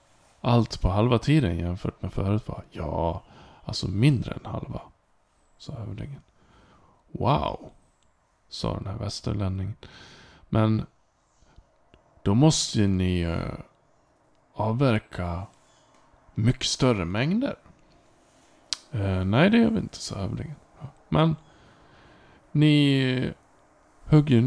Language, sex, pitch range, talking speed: Swedish, male, 95-130 Hz, 90 wpm